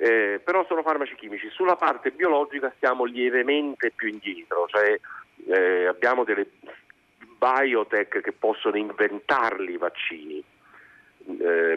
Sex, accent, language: male, native, Italian